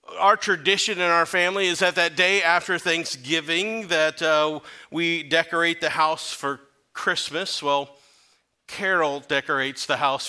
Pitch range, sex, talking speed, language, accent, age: 155-190 Hz, male, 140 wpm, English, American, 40-59